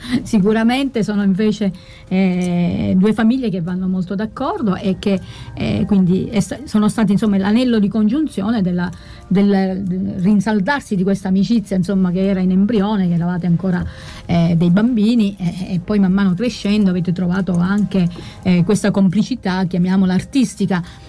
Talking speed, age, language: 140 wpm, 40-59, Italian